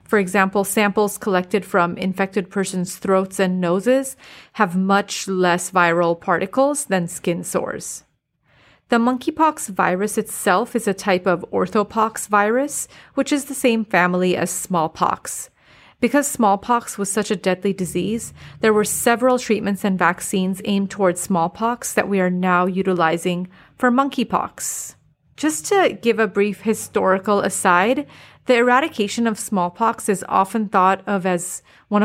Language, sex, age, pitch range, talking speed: English, female, 30-49, 185-230 Hz, 140 wpm